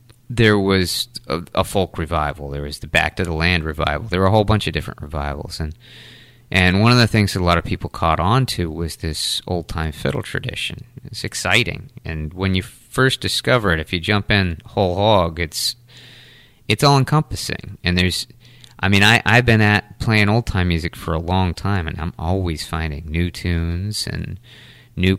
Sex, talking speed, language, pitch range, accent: male, 200 wpm, English, 85-110 Hz, American